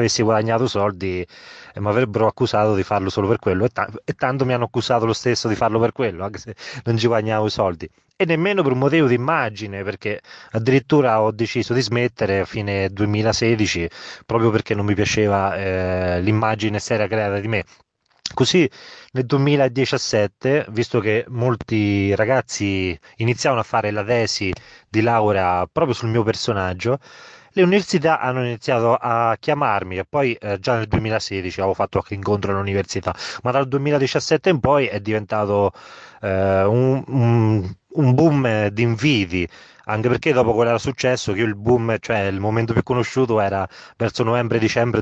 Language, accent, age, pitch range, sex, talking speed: Italian, native, 20-39, 105-125 Hz, male, 165 wpm